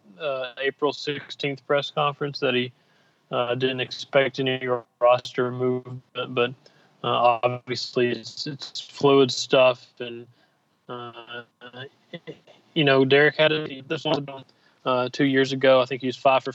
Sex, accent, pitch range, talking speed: male, American, 125-140 Hz, 140 wpm